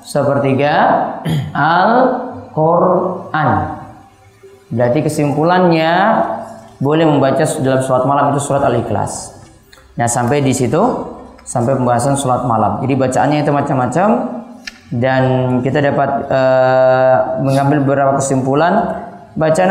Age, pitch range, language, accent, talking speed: 20-39, 130-175 Hz, Indonesian, native, 95 wpm